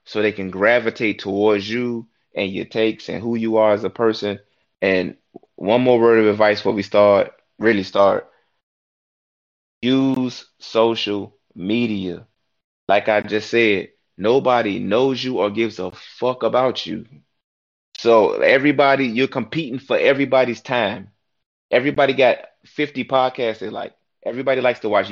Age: 20-39